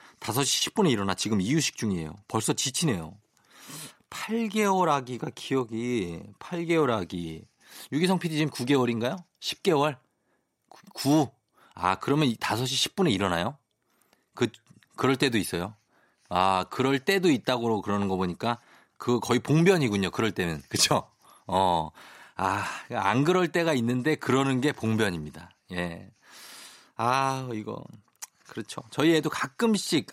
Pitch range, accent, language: 105-150 Hz, native, Korean